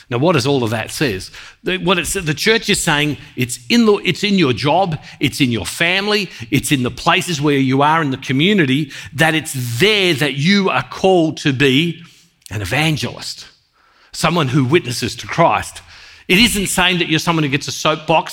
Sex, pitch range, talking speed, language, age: male, 130-180 Hz, 200 wpm, English, 50-69